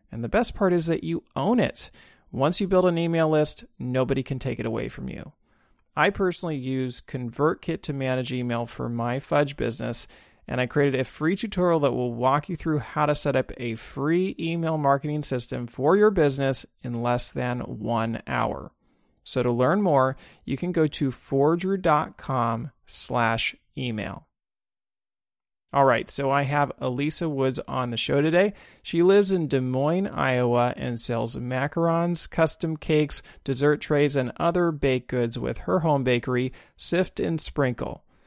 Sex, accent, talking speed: male, American, 165 wpm